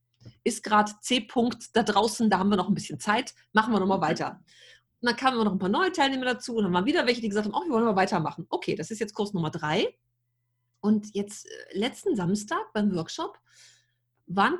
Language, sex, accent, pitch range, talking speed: German, female, German, 170-220 Hz, 220 wpm